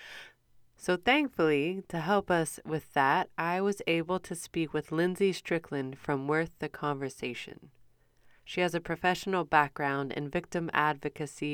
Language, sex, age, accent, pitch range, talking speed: English, female, 30-49, American, 145-175 Hz, 140 wpm